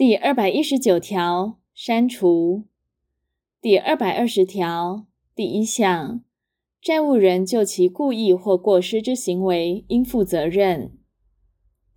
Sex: female